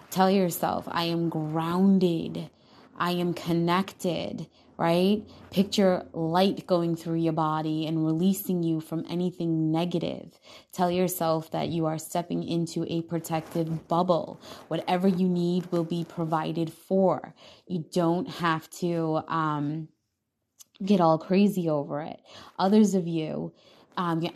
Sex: female